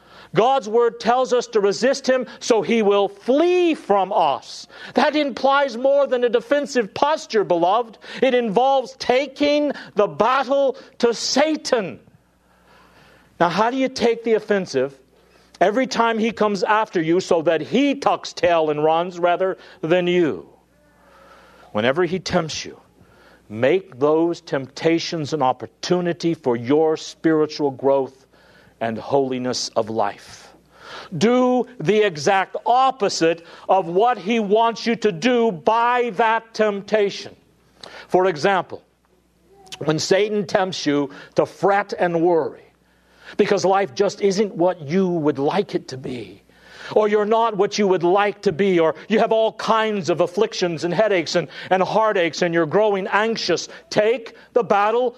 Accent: American